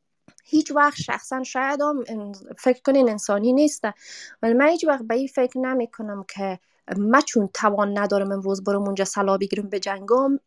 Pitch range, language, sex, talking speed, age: 200-260 Hz, Persian, female, 160 wpm, 20-39